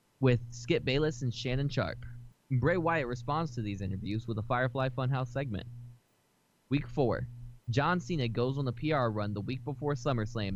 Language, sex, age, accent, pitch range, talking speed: English, male, 10-29, American, 120-140 Hz, 170 wpm